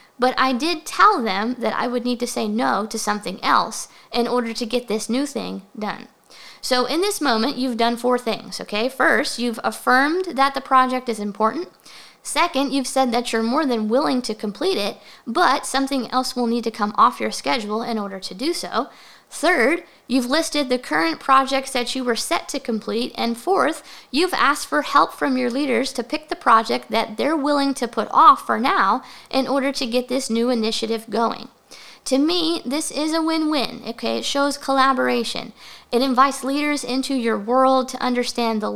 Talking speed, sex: 195 wpm, female